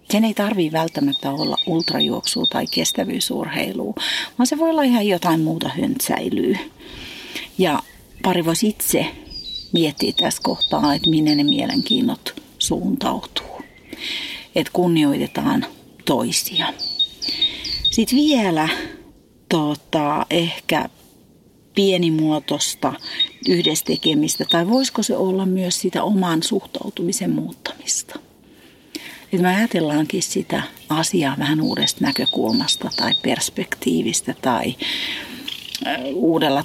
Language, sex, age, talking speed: Finnish, female, 40-59, 90 wpm